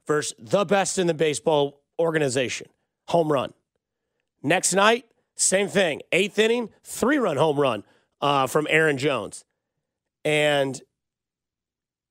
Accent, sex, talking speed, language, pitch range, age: American, male, 115 wpm, English, 165-215 Hz, 30-49